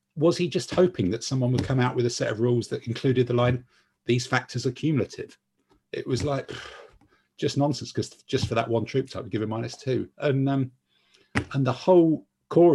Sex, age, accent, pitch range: male, 50-69, British, 110-140 Hz